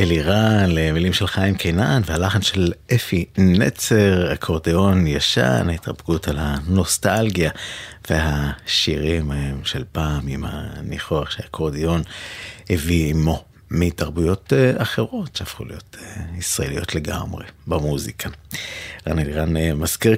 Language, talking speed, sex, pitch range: Hebrew, 95 wpm, male, 80-105 Hz